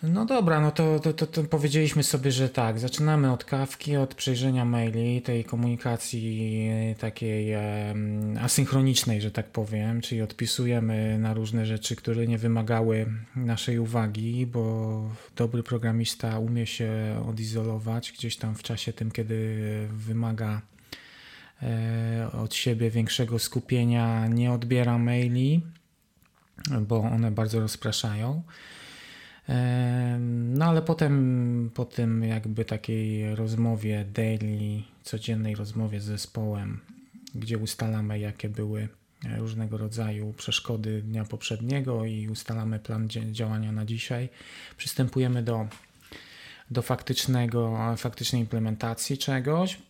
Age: 20-39